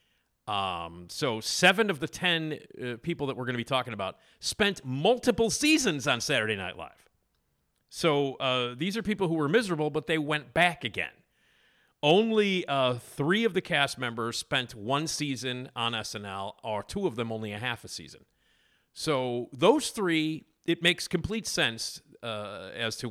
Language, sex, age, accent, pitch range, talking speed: English, male, 40-59, American, 110-160 Hz, 170 wpm